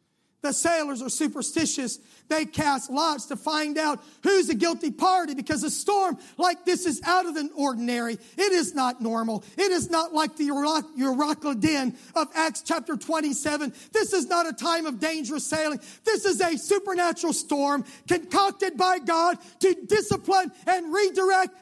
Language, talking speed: English, 165 wpm